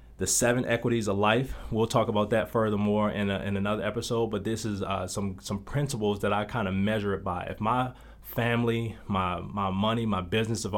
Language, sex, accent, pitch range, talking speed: English, male, American, 100-120 Hz, 210 wpm